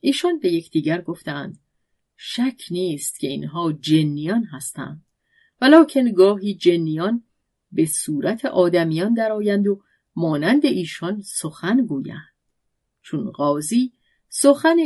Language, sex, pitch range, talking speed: Persian, female, 160-240 Hz, 105 wpm